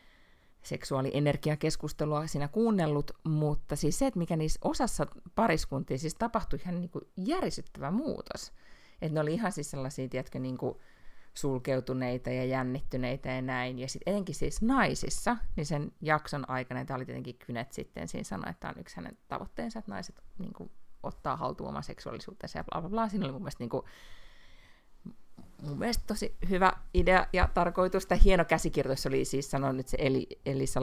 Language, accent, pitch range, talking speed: Finnish, native, 130-185 Hz, 165 wpm